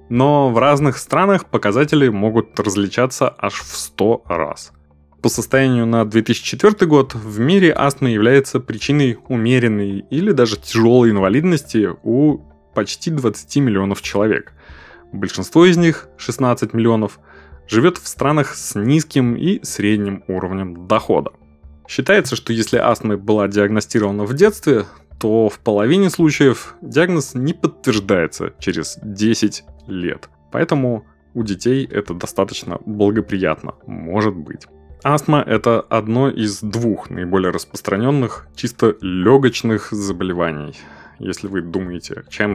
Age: 20-39